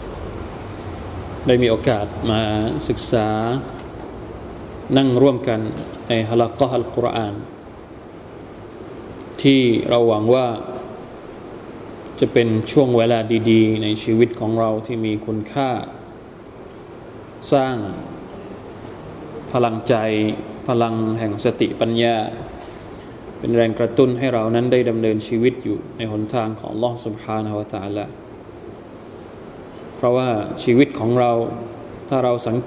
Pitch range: 110-135 Hz